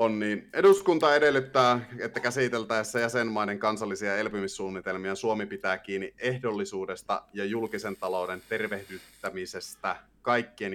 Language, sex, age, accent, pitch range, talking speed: Finnish, male, 30-49, native, 95-130 Hz, 100 wpm